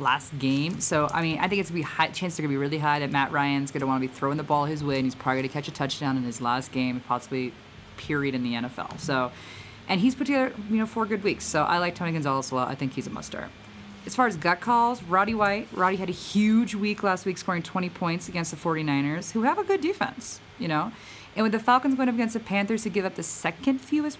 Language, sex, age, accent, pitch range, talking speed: English, female, 30-49, American, 130-195 Hz, 280 wpm